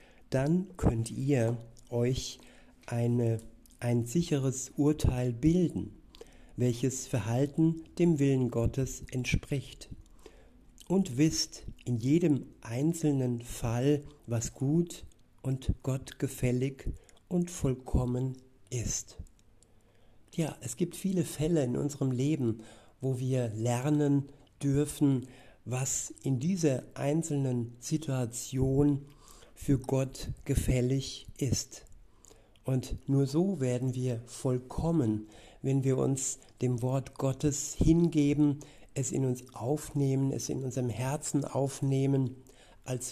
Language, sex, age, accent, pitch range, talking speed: German, male, 60-79, German, 120-145 Hz, 100 wpm